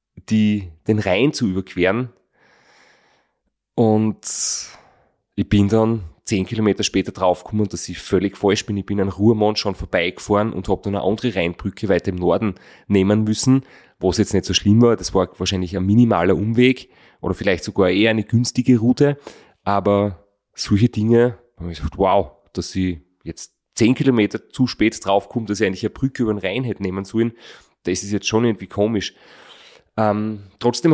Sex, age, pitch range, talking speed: male, 30-49, 95-115 Hz, 170 wpm